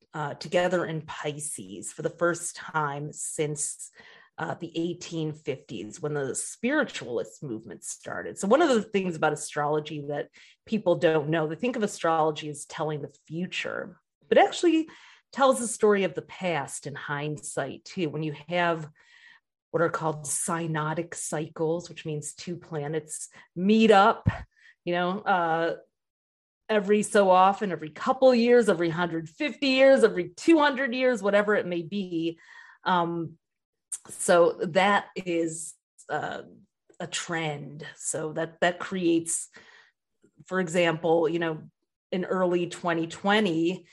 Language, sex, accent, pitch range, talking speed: English, female, American, 155-195 Hz, 135 wpm